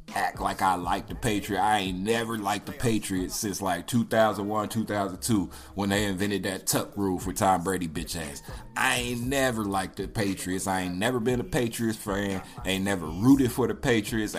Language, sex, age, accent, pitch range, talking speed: English, male, 30-49, American, 95-125 Hz, 190 wpm